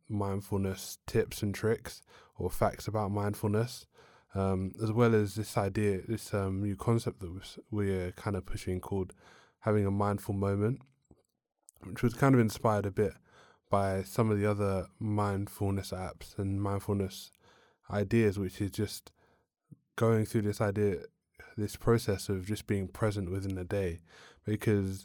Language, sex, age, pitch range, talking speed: English, male, 20-39, 95-105 Hz, 150 wpm